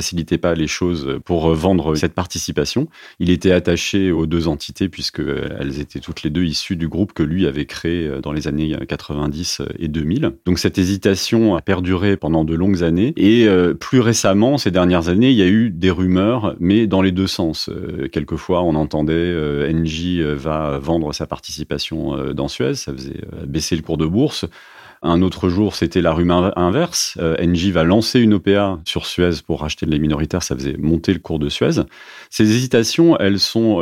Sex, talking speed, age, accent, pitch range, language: male, 190 wpm, 30-49, French, 80-95 Hz, French